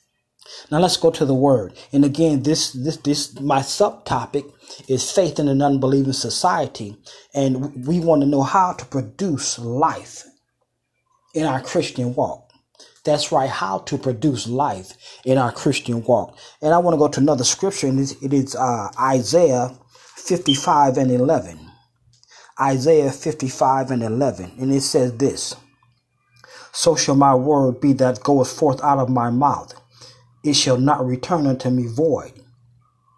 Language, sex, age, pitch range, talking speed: English, male, 30-49, 125-150 Hz, 155 wpm